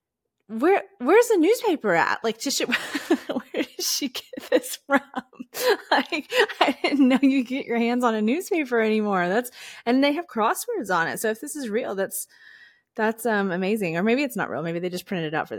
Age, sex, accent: 20-39, female, American